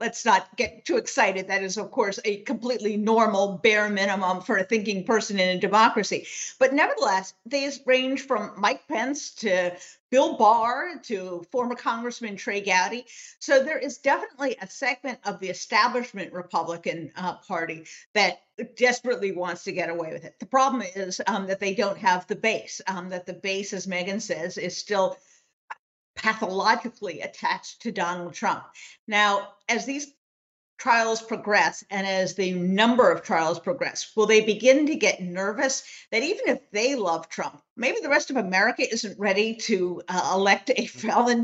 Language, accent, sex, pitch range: English, American, female, 190-250 Hz